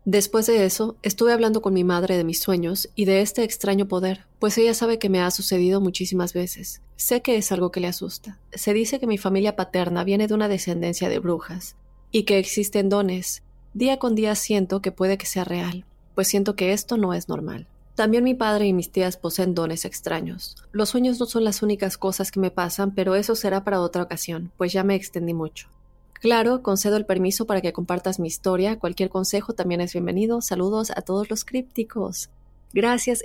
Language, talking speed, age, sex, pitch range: Spanish, 205 wpm, 30-49, female, 180-210 Hz